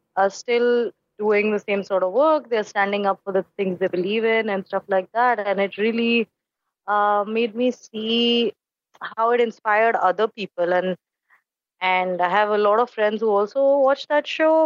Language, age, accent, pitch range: English, 20-39, Indian, 185-225 Hz